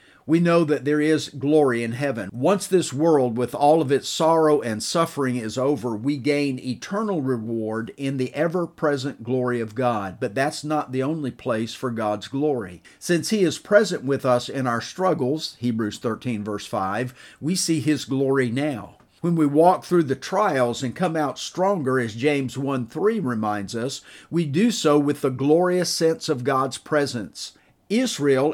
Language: English